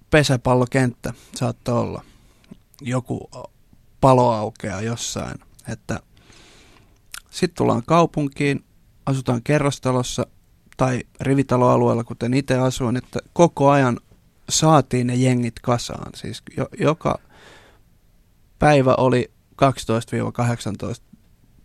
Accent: native